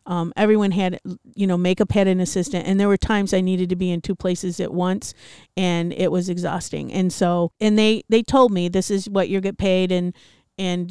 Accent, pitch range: American, 170-185 Hz